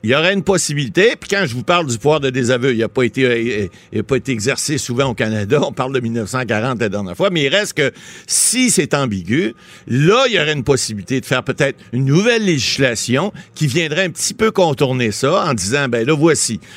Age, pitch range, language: 60-79, 130-175 Hz, French